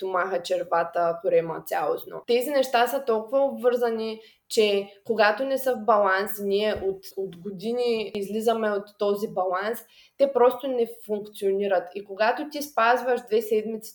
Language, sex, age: Bulgarian, female, 20-39